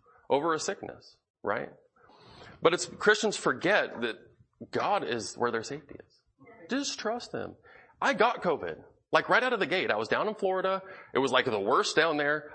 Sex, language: male, English